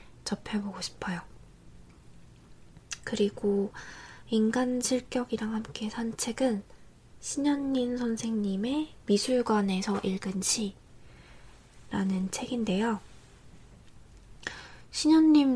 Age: 20-39